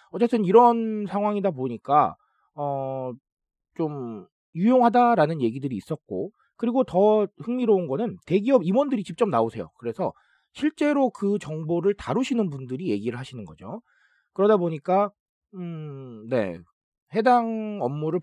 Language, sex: Korean, male